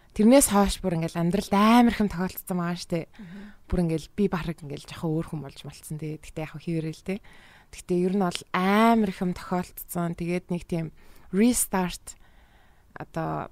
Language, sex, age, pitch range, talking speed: English, female, 20-39, 165-200 Hz, 180 wpm